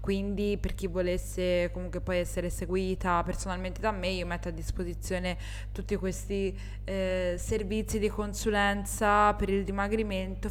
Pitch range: 190-225 Hz